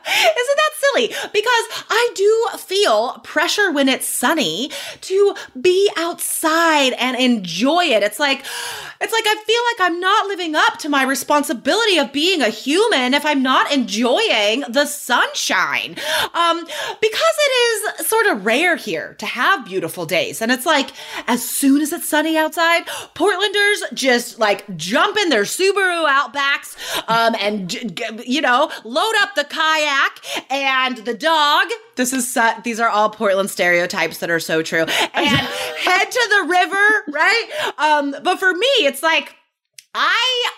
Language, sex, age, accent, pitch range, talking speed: English, female, 30-49, American, 255-375 Hz, 155 wpm